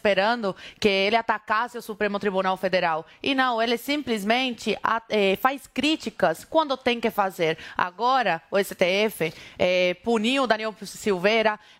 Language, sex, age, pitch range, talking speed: Portuguese, female, 20-39, 210-260 Hz, 125 wpm